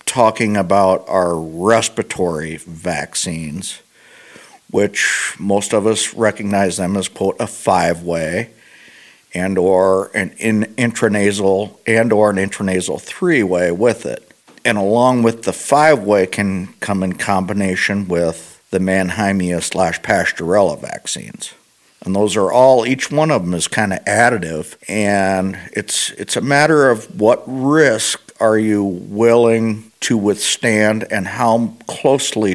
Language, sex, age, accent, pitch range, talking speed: English, male, 50-69, American, 95-115 Hz, 125 wpm